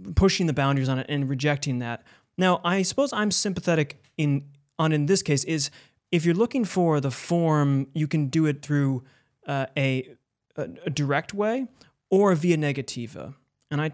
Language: English